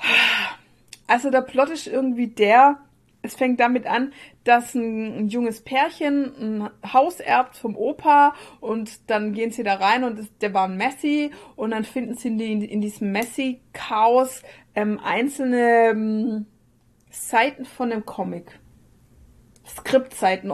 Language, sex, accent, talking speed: German, female, German, 130 wpm